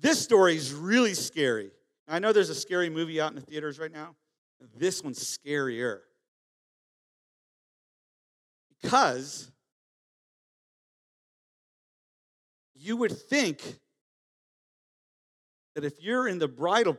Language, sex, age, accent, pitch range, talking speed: English, male, 50-69, American, 140-210 Hz, 105 wpm